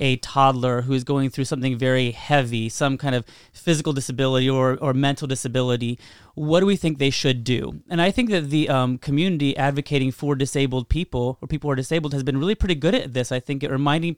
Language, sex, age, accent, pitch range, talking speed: English, male, 30-49, American, 130-160 Hz, 220 wpm